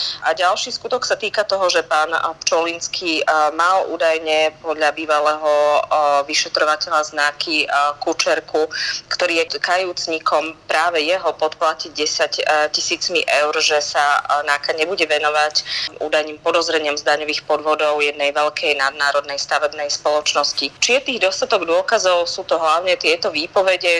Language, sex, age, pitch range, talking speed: Slovak, female, 30-49, 150-170 Hz, 125 wpm